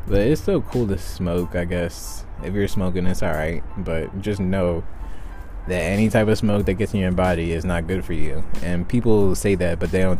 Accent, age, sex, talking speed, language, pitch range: American, 20-39, male, 225 wpm, English, 85-100 Hz